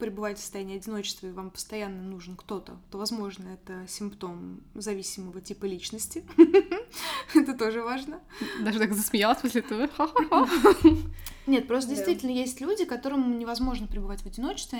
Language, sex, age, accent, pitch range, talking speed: Russian, female, 20-39, native, 200-250 Hz, 140 wpm